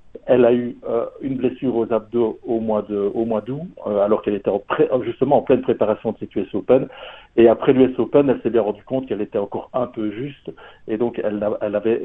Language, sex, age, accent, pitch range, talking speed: French, male, 60-79, French, 110-130 Hz, 245 wpm